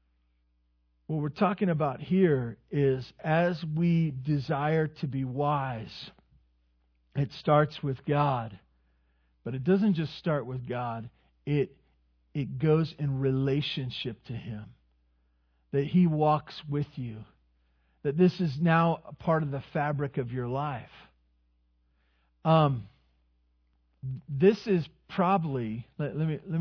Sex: male